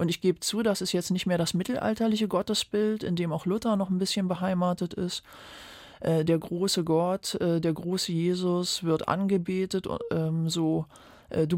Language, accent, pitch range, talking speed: German, German, 165-185 Hz, 160 wpm